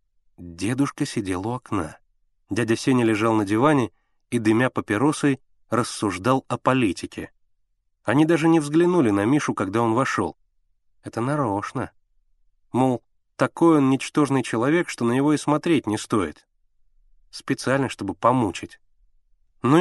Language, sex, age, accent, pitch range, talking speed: Russian, male, 30-49, native, 105-145 Hz, 125 wpm